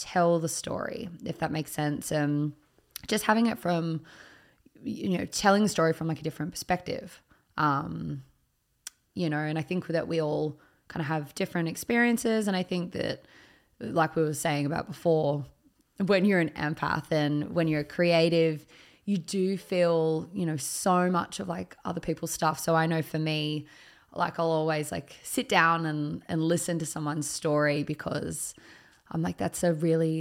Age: 20-39